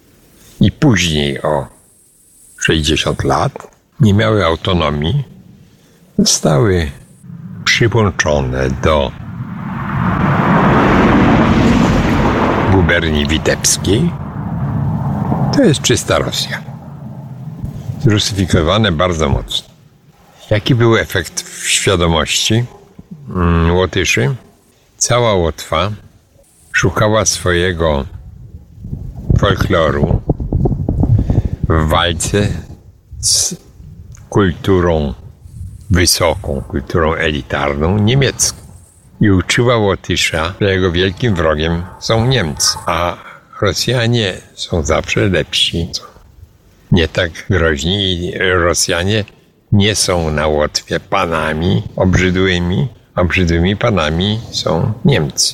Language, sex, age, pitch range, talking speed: Polish, male, 60-79, 85-115 Hz, 75 wpm